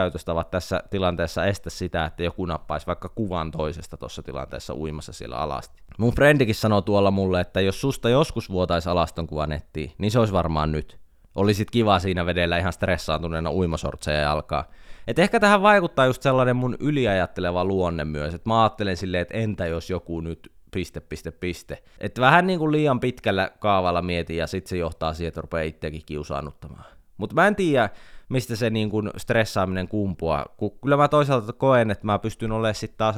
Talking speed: 180 wpm